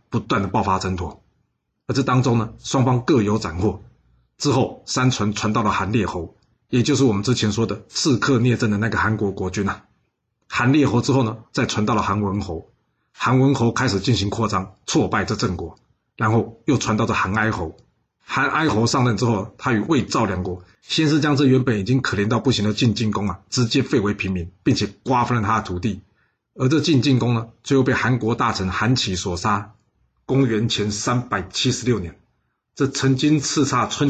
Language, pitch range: Chinese, 100-130 Hz